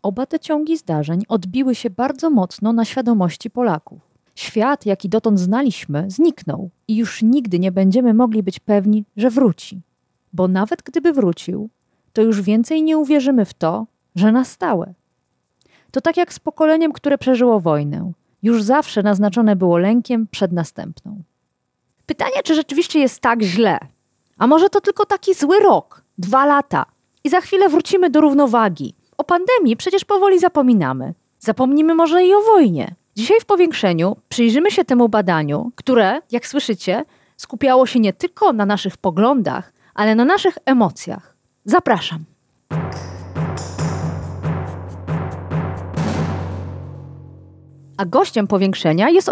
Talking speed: 135 wpm